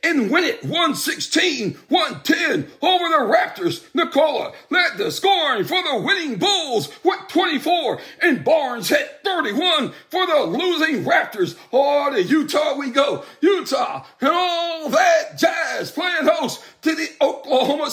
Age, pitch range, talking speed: 60-79, 300-365 Hz, 135 wpm